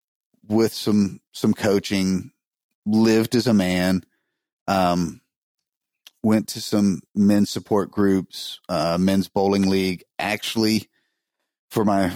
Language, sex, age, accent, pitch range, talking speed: English, male, 30-49, American, 90-105 Hz, 110 wpm